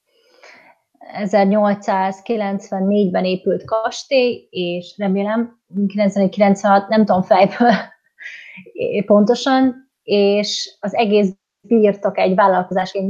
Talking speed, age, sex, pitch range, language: 80 wpm, 30-49, female, 195-230 Hz, Hungarian